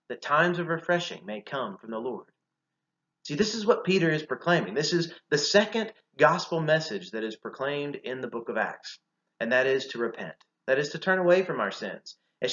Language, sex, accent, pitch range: English, male, American, 125-180 Hz